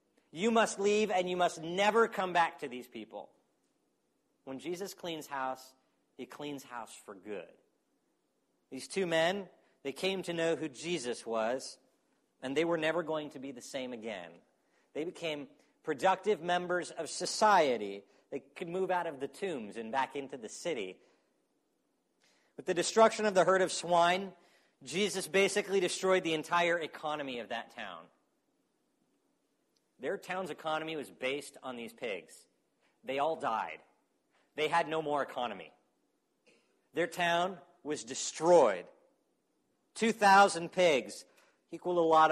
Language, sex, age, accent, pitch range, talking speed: English, male, 40-59, American, 155-200 Hz, 145 wpm